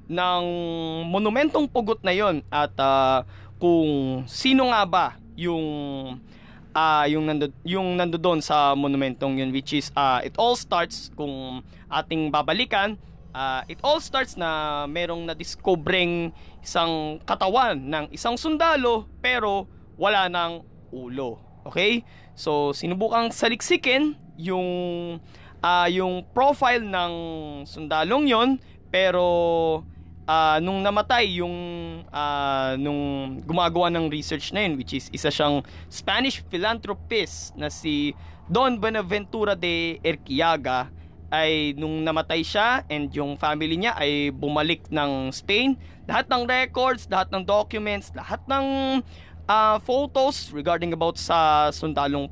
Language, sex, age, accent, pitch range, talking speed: Filipino, male, 20-39, native, 145-205 Hz, 120 wpm